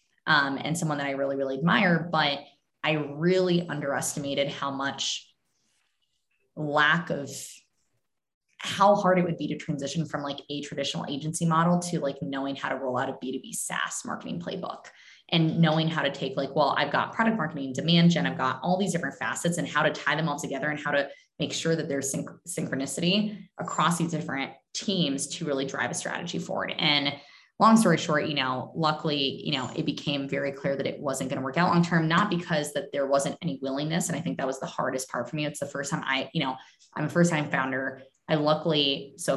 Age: 20-39